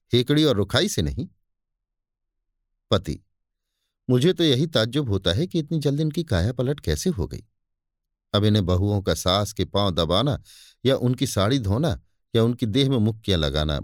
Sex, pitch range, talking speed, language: male, 95-155 Hz, 170 wpm, Hindi